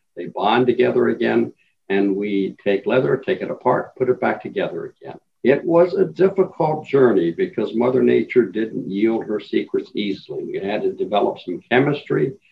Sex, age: male, 60-79